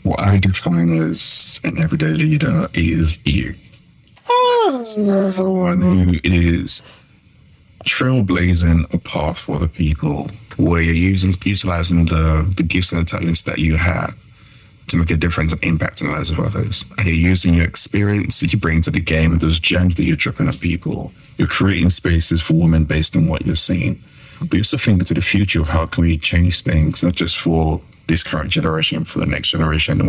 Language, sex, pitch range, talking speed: English, male, 85-110 Hz, 190 wpm